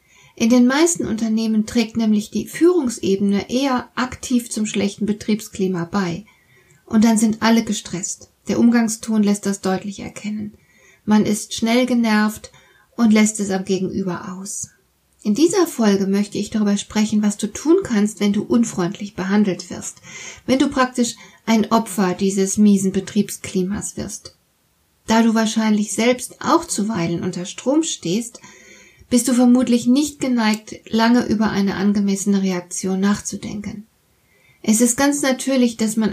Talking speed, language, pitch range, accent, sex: 145 wpm, German, 195-240 Hz, German, female